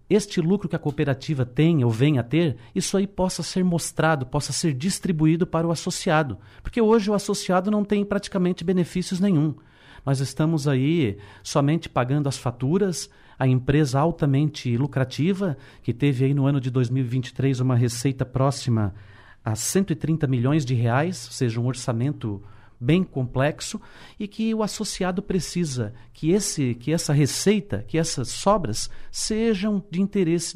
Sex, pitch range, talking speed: male, 125-180 Hz, 155 wpm